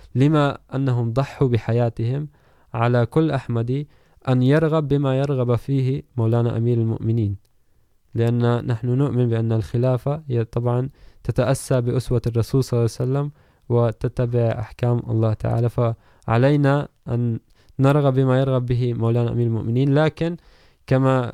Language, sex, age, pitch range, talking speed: Urdu, male, 20-39, 115-135 Hz, 125 wpm